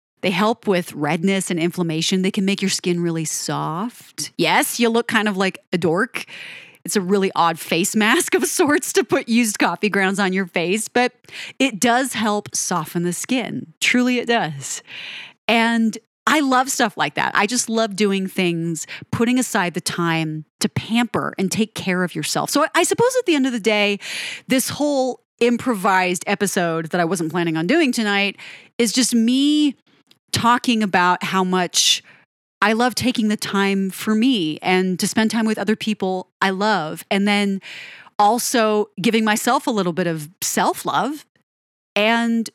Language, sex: English, female